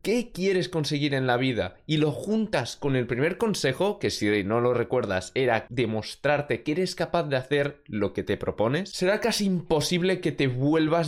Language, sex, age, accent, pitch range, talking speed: Spanish, male, 20-39, Spanish, 125-180 Hz, 190 wpm